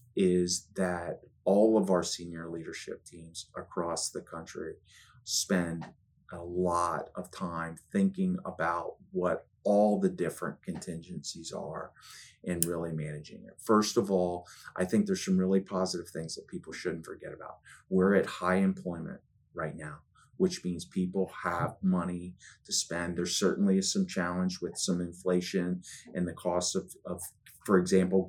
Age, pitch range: 30-49, 90-105 Hz